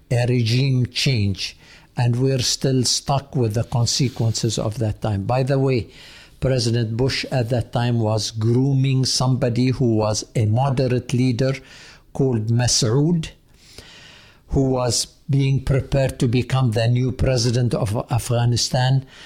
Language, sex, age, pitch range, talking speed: English, male, 60-79, 120-135 Hz, 130 wpm